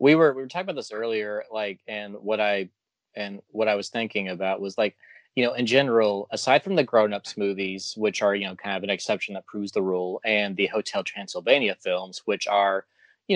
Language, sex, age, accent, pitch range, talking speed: English, male, 20-39, American, 95-120 Hz, 225 wpm